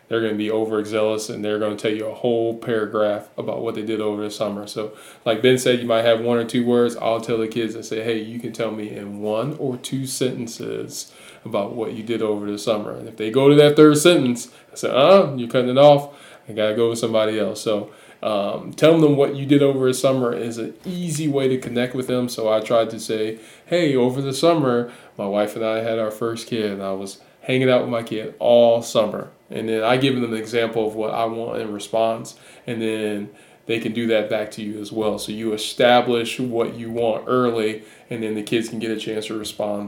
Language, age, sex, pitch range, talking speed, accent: English, 20-39, male, 110-125 Hz, 245 wpm, American